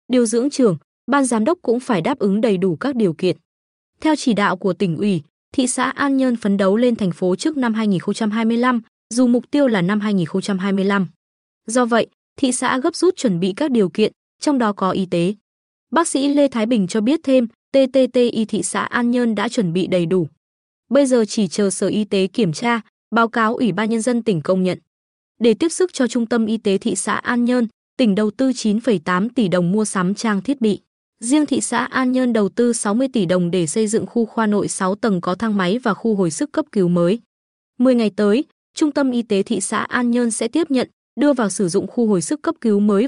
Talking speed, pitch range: 230 wpm, 195-255 Hz